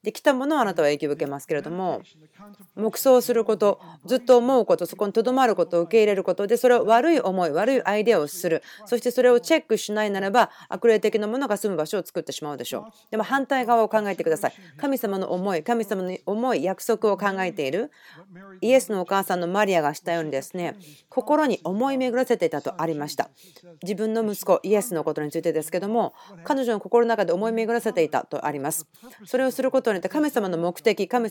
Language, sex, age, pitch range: Japanese, female, 40-59, 180-235 Hz